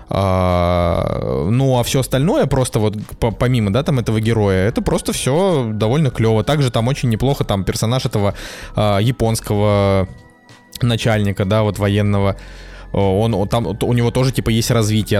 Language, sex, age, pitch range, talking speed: Russian, male, 20-39, 105-130 Hz, 145 wpm